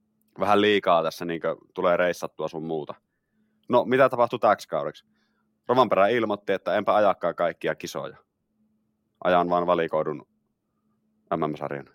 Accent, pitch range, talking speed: native, 90-110 Hz, 125 wpm